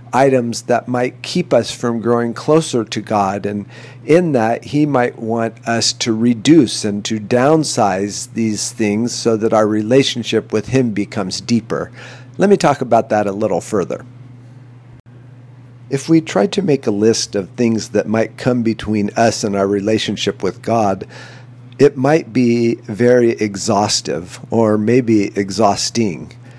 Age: 50-69